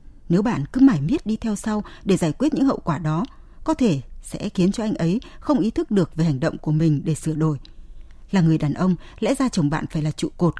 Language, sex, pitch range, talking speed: Vietnamese, female, 160-225 Hz, 260 wpm